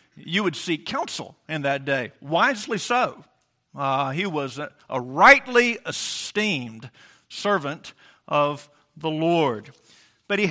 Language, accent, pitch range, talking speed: English, American, 165-225 Hz, 125 wpm